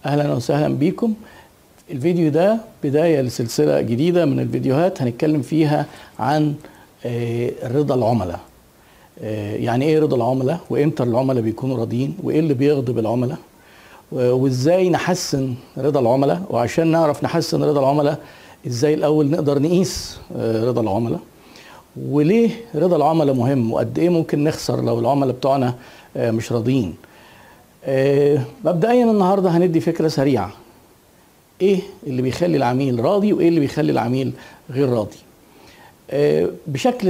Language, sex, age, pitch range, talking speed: Arabic, male, 50-69, 125-165 Hz, 120 wpm